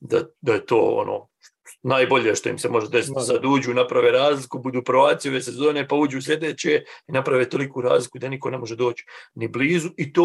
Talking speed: 205 wpm